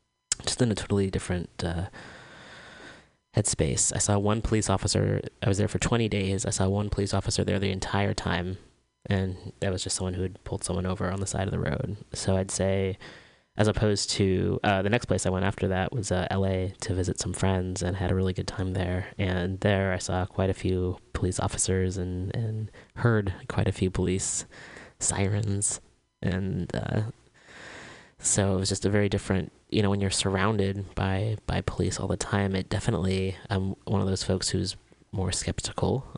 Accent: American